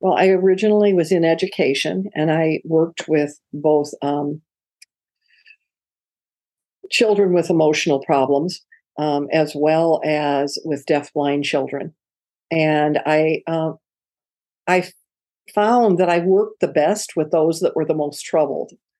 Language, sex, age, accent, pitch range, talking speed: English, female, 50-69, American, 145-185 Hz, 125 wpm